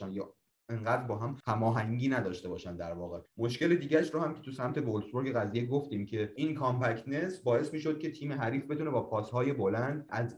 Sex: male